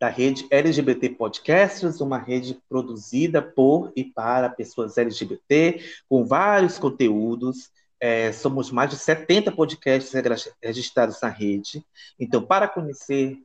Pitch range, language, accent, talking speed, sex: 125-180 Hz, Portuguese, Brazilian, 115 wpm, male